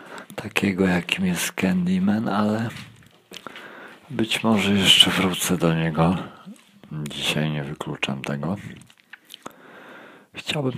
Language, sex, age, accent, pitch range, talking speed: Polish, male, 40-59, native, 75-100 Hz, 90 wpm